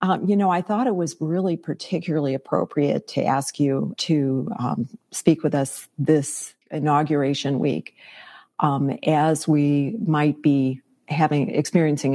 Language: English